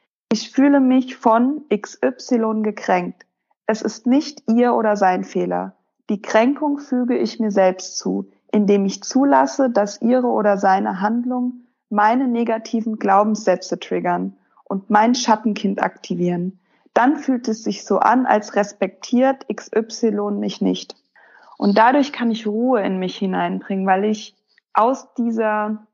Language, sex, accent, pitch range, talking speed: German, female, German, 200-245 Hz, 135 wpm